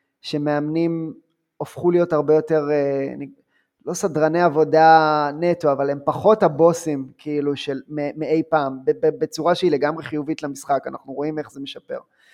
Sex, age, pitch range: male, 20-39, 145-165 Hz